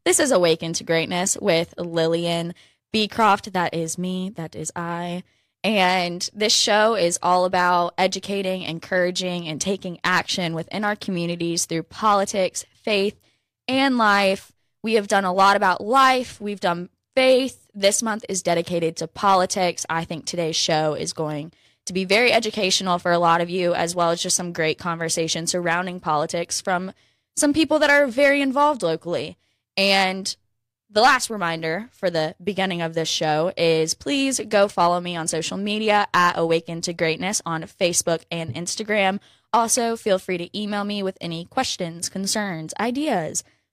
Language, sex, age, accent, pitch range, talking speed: English, female, 20-39, American, 165-205 Hz, 160 wpm